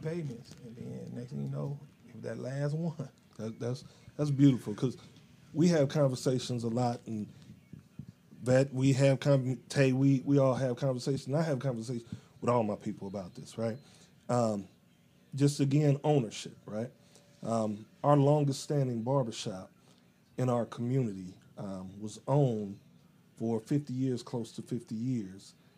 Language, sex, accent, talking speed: English, male, American, 140 wpm